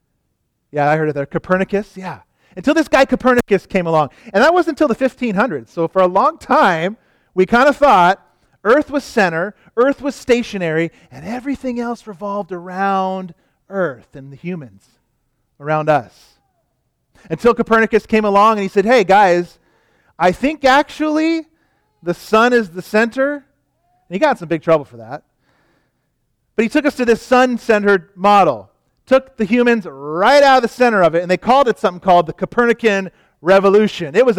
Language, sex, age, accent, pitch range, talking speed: English, male, 40-59, American, 160-235 Hz, 175 wpm